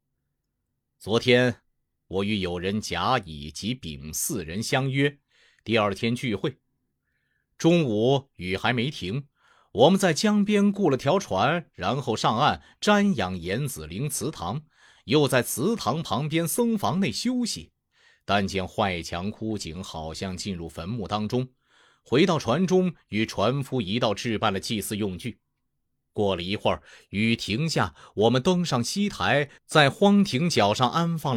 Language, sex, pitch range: Chinese, male, 95-140 Hz